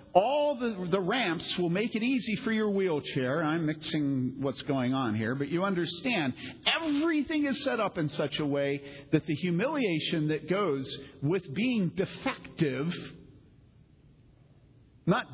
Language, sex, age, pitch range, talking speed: English, male, 50-69, 135-190 Hz, 145 wpm